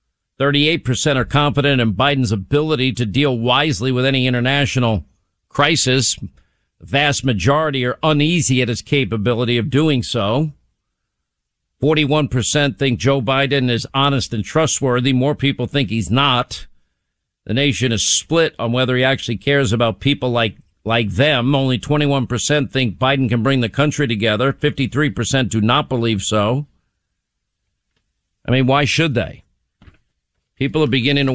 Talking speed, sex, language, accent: 140 wpm, male, English, American